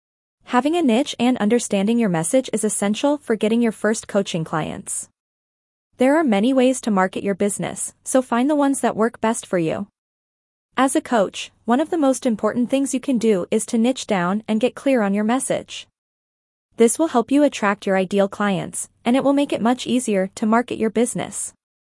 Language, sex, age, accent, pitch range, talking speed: English, female, 20-39, American, 205-255 Hz, 200 wpm